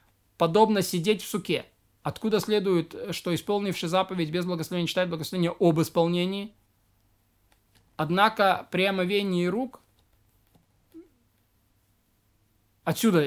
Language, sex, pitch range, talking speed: Russian, male, 150-190 Hz, 90 wpm